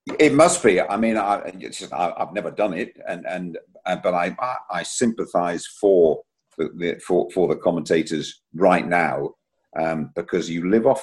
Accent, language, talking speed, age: British, English, 175 wpm, 50-69